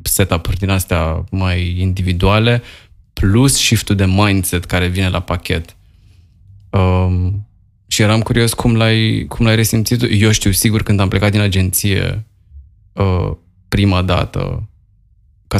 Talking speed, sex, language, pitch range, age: 130 wpm, male, Romanian, 95-105 Hz, 20-39